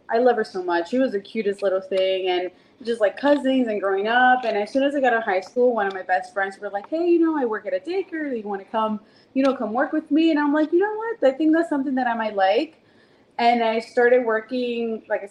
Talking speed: 280 wpm